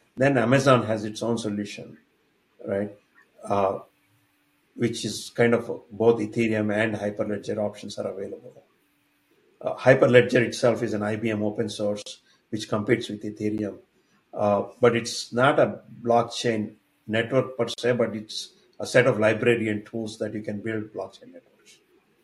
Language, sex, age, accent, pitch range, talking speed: English, male, 50-69, Indian, 105-120 Hz, 145 wpm